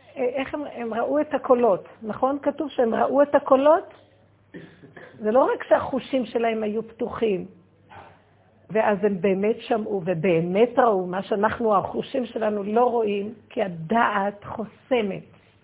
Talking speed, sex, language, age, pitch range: 130 wpm, female, Hebrew, 50-69, 180-250 Hz